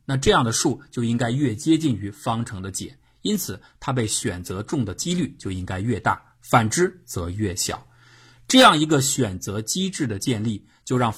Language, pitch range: Chinese, 105-135 Hz